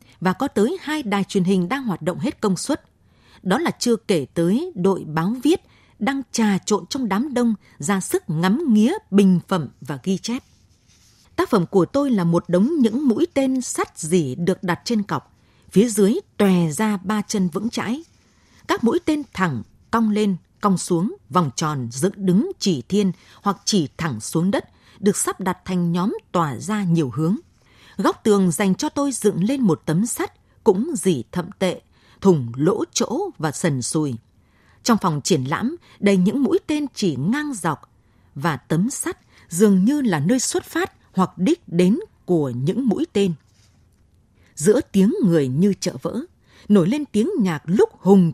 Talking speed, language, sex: 180 wpm, Vietnamese, female